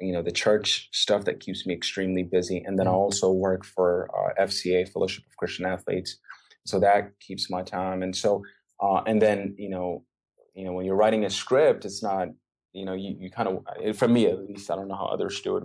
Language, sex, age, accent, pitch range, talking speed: English, male, 30-49, American, 95-105 Hz, 230 wpm